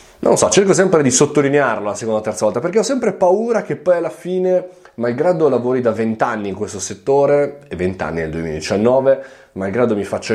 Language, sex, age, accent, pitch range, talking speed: Italian, male, 20-39, native, 95-145 Hz, 205 wpm